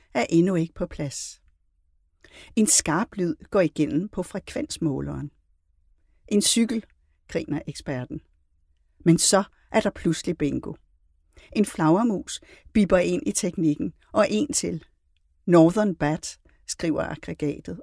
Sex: female